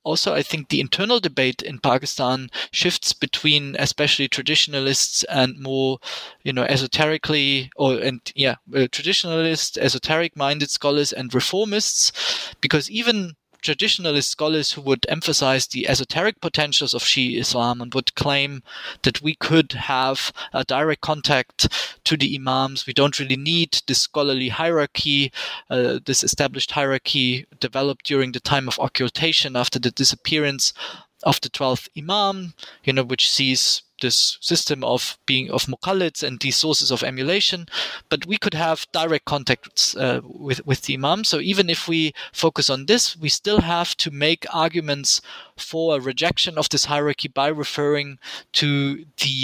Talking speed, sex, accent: 150 wpm, male, German